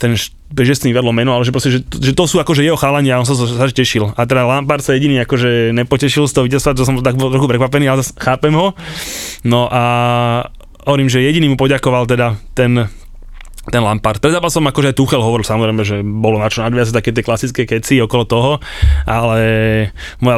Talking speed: 205 wpm